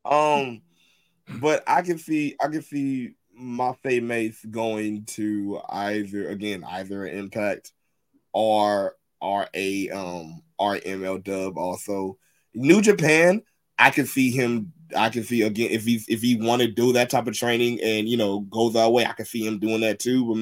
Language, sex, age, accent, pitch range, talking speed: English, male, 20-39, American, 110-135 Hz, 170 wpm